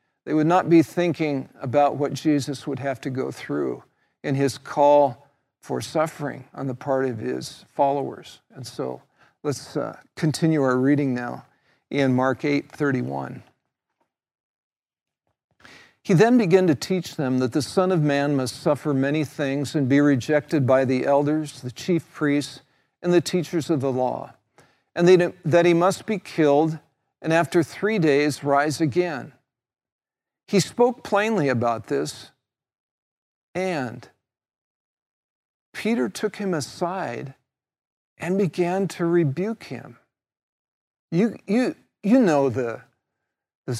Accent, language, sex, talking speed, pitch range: American, English, male, 135 wpm, 135-170 Hz